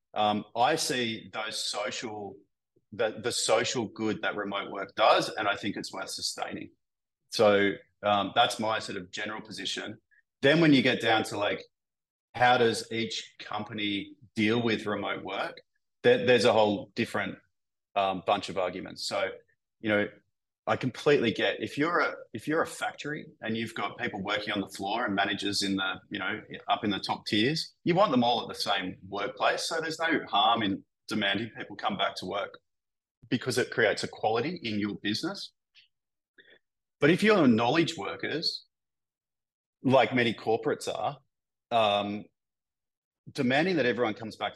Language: English